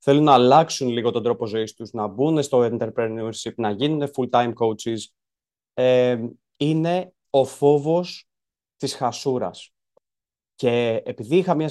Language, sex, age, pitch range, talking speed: Greek, male, 20-39, 120-150 Hz, 135 wpm